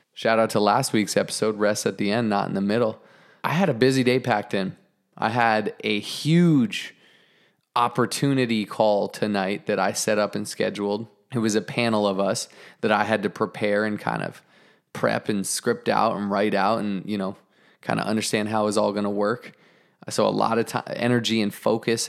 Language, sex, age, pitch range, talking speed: English, male, 20-39, 105-125 Hz, 205 wpm